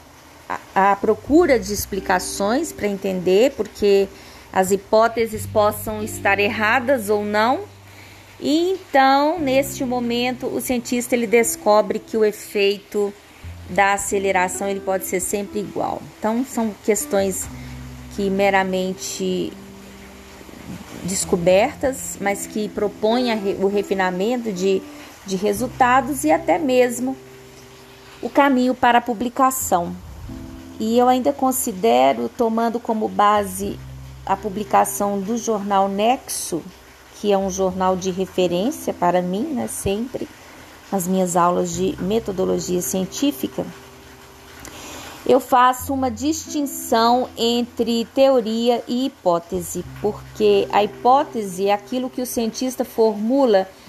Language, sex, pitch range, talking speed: Portuguese, female, 190-245 Hz, 110 wpm